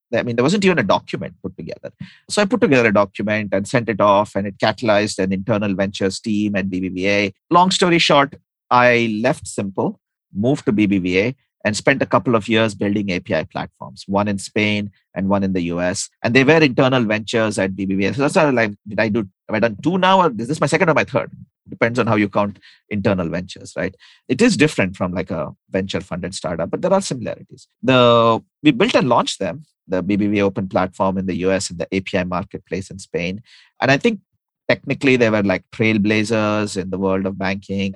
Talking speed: 210 wpm